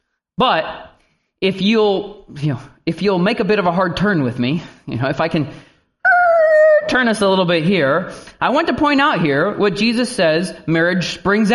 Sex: male